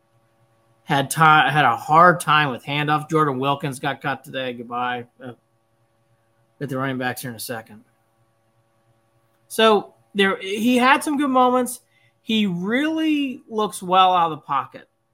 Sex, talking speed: male, 150 wpm